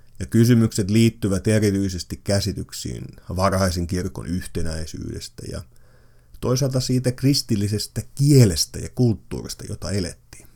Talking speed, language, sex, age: 90 wpm, Finnish, male, 30-49